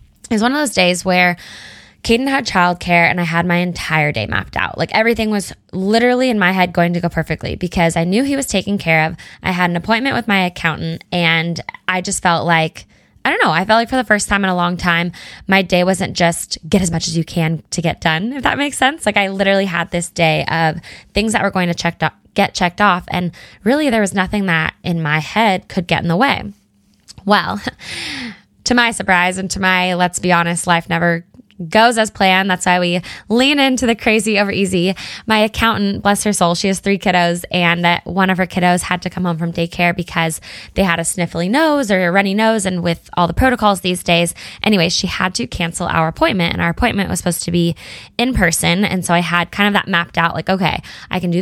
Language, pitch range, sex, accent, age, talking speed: English, 170-205 Hz, female, American, 10-29, 235 wpm